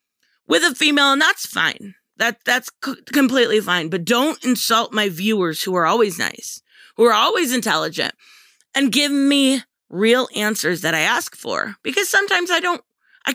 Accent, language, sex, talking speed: American, English, female, 170 wpm